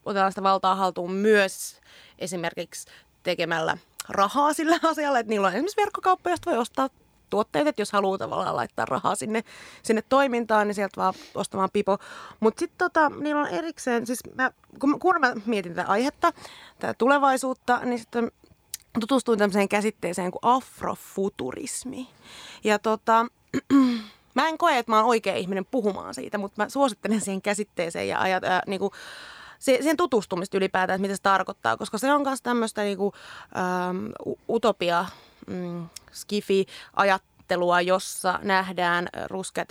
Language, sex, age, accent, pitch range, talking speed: Finnish, female, 30-49, native, 190-255 Hz, 140 wpm